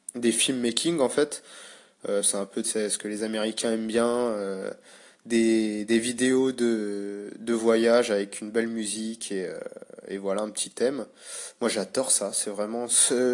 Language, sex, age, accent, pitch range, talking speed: English, male, 20-39, French, 110-130 Hz, 175 wpm